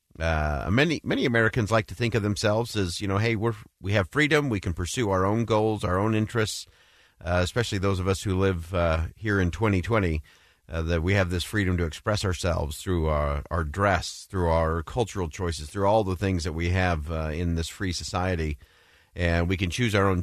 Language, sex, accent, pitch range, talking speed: English, male, American, 85-120 Hz, 215 wpm